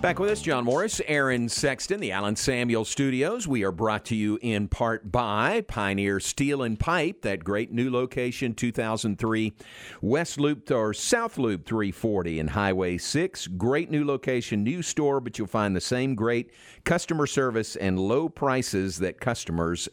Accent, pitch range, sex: American, 105-140 Hz, male